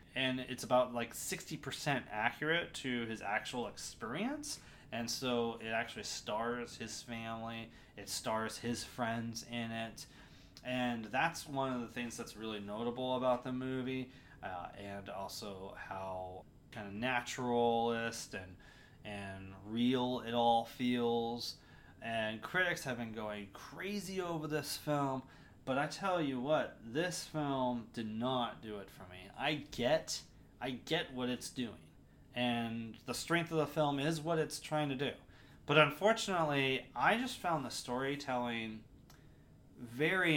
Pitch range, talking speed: 115-150 Hz, 145 wpm